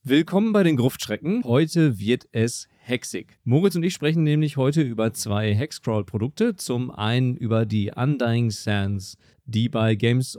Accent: German